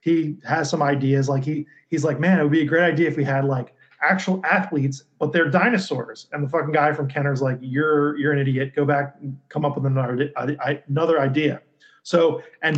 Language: English